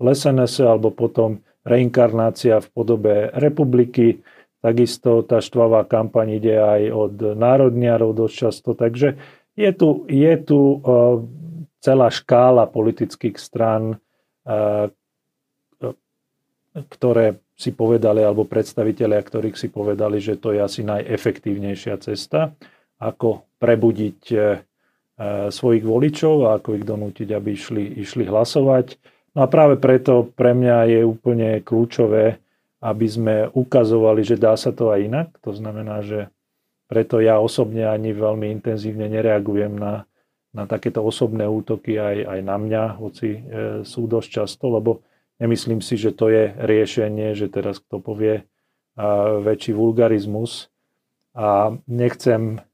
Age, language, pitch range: 40-59, Slovak, 105-120 Hz